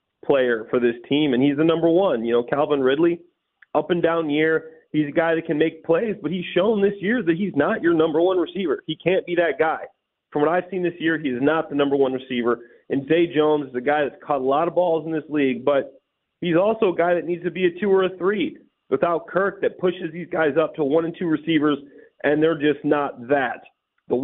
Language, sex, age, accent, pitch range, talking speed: English, male, 30-49, American, 125-165 Hz, 250 wpm